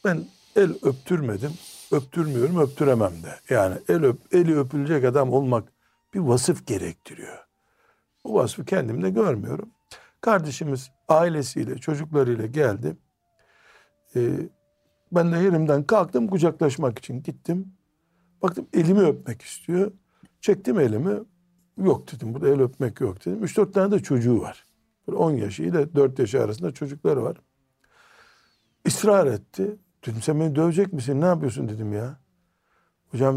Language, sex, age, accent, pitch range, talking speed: Turkish, male, 60-79, native, 125-175 Hz, 130 wpm